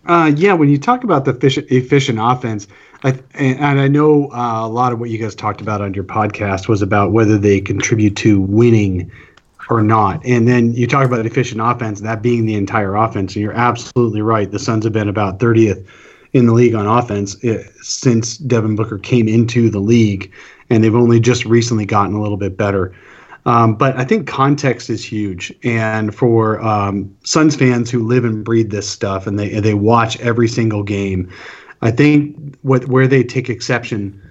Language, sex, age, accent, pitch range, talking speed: English, male, 30-49, American, 105-125 Hz, 190 wpm